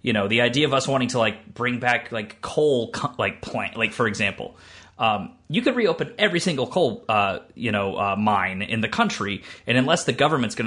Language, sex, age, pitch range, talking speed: English, male, 30-49, 105-145 Hz, 215 wpm